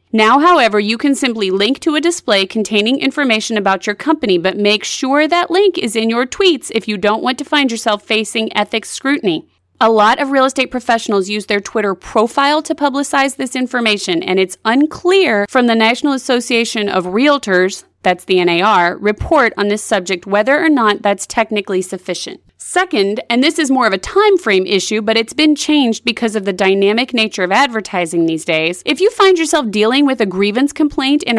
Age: 30-49